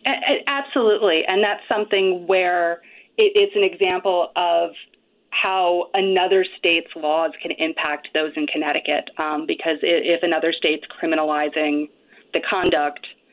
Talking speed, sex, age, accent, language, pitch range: 115 wpm, female, 30-49, American, English, 160-220 Hz